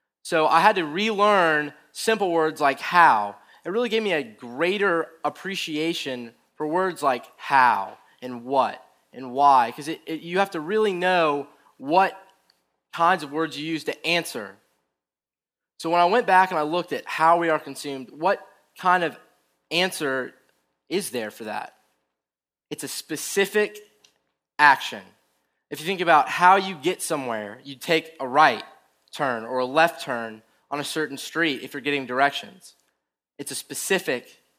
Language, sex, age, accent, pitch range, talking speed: English, male, 20-39, American, 130-170 Hz, 160 wpm